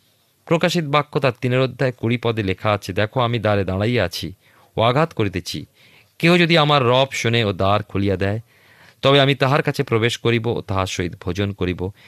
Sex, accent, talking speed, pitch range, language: male, native, 185 wpm, 100-135 Hz, Bengali